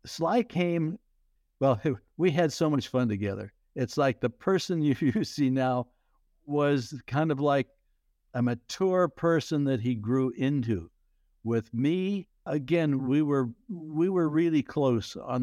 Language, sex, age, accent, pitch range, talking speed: English, male, 60-79, American, 120-155 Hz, 150 wpm